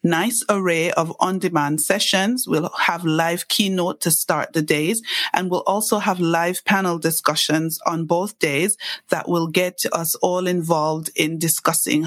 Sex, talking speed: female, 155 wpm